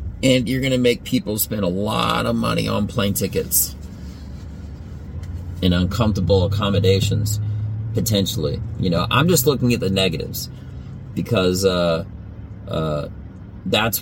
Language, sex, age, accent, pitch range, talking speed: English, male, 30-49, American, 90-110 Hz, 130 wpm